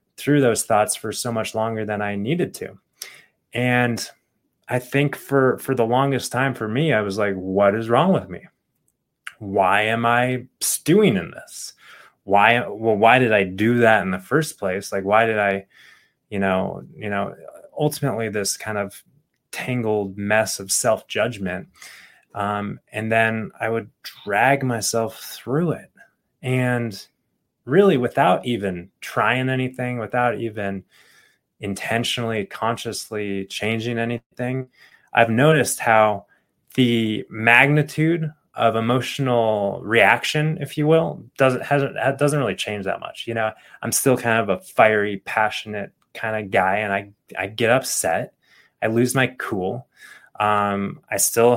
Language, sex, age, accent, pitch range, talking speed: English, male, 20-39, American, 105-125 Hz, 145 wpm